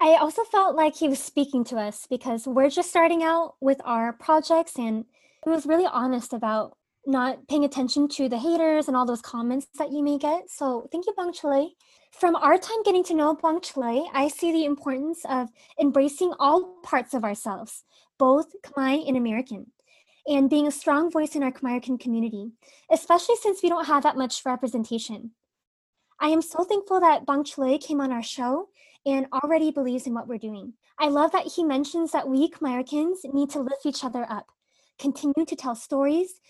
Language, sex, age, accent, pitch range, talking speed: English, female, 20-39, American, 255-320 Hz, 190 wpm